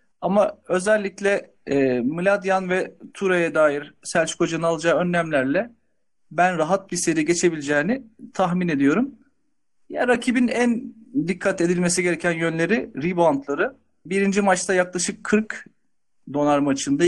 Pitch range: 165-220 Hz